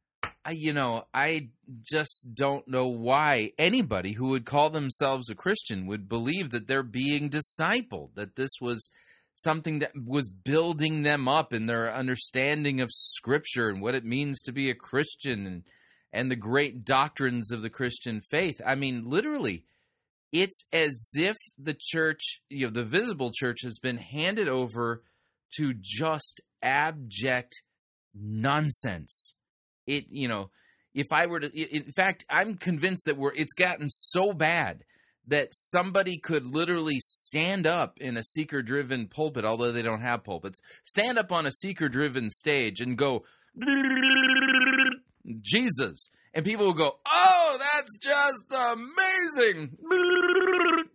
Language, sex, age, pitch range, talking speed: English, male, 30-49, 125-180 Hz, 145 wpm